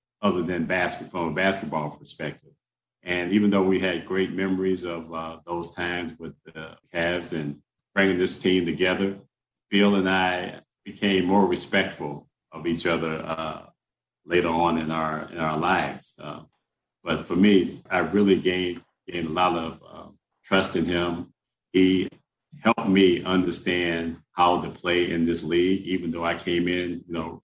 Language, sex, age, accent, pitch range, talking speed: English, male, 50-69, American, 85-100 Hz, 165 wpm